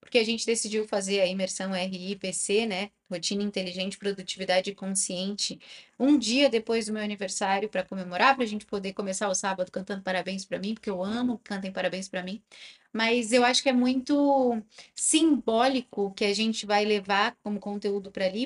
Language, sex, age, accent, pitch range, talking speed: Portuguese, female, 10-29, Brazilian, 195-240 Hz, 180 wpm